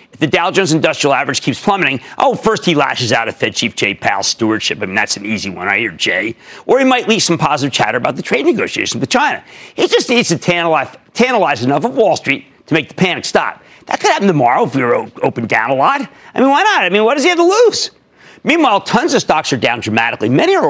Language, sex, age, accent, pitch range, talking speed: English, male, 50-69, American, 150-255 Hz, 255 wpm